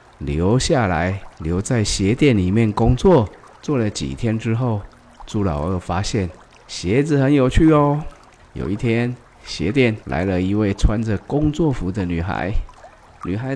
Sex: male